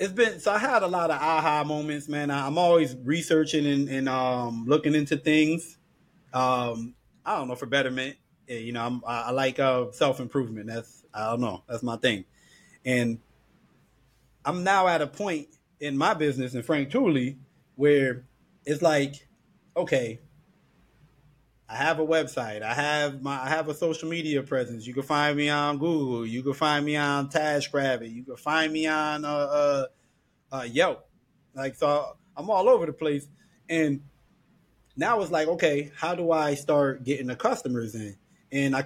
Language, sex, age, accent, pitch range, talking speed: English, male, 20-39, American, 130-155 Hz, 170 wpm